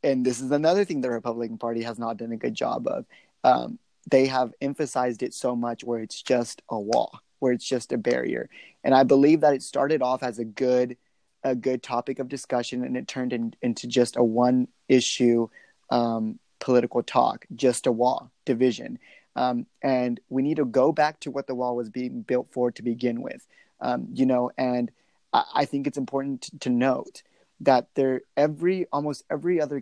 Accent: American